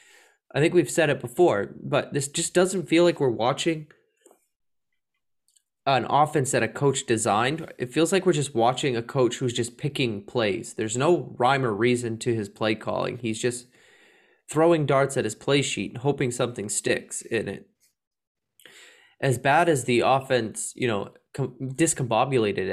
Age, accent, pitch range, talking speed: 20-39, American, 120-165 Hz, 165 wpm